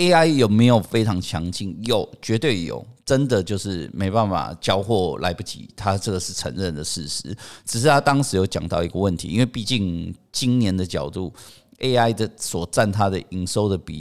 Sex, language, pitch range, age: male, Chinese, 85-115 Hz, 50-69